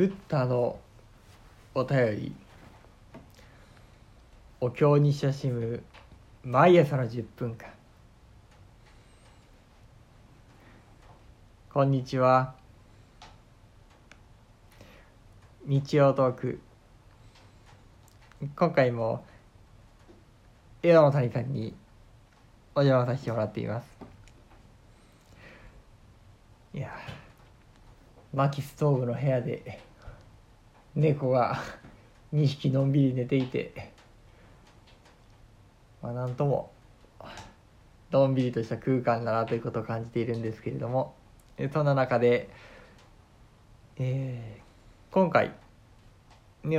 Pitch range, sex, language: 110-130 Hz, male, Japanese